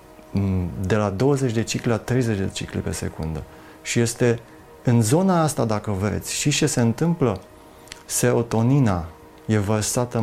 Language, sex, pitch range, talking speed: Romanian, male, 100-130 Hz, 145 wpm